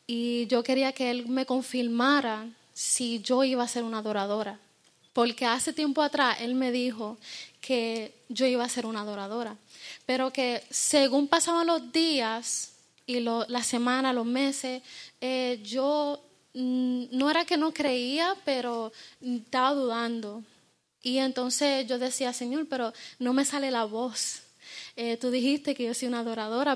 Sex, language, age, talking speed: female, Spanish, 20-39, 155 wpm